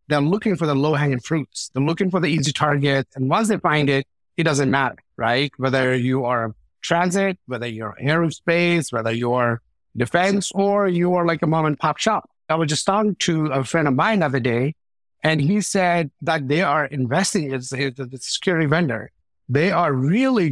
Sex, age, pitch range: male, 50-69, 130-175 Hz